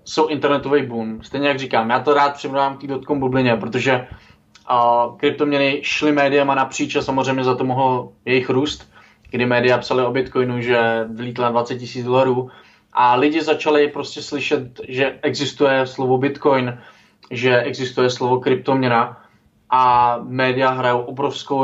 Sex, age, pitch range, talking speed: male, 20-39, 120-135 Hz, 145 wpm